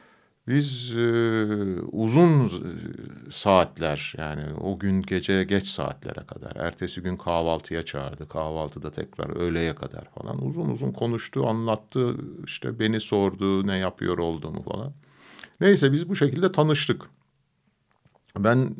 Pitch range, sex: 90-130 Hz, male